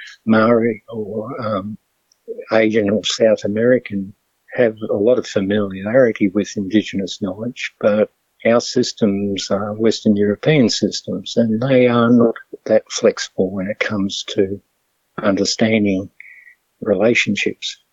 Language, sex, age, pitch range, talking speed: English, male, 60-79, 100-115 Hz, 115 wpm